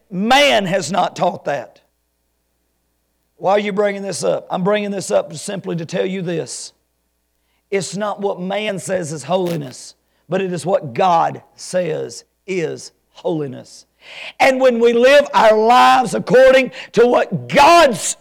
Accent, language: American, English